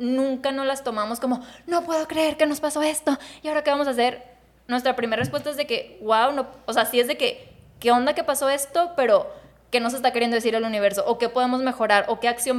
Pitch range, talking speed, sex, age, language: 210-265 Hz, 250 wpm, female, 20-39, Spanish